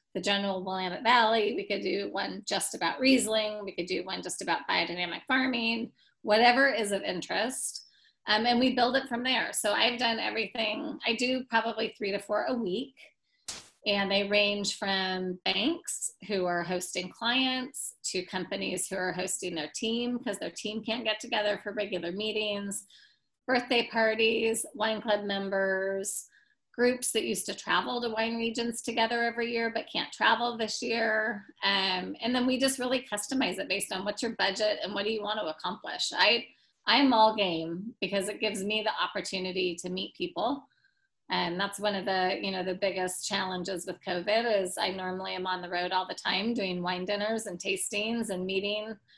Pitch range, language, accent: 190-235 Hz, English, American